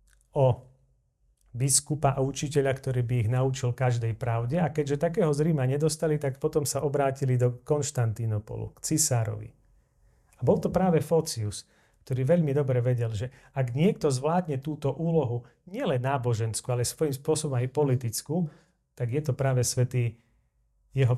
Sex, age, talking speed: male, 40-59, 145 wpm